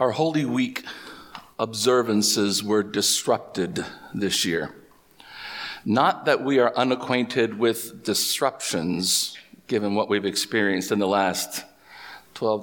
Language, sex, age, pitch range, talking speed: English, male, 50-69, 110-145 Hz, 110 wpm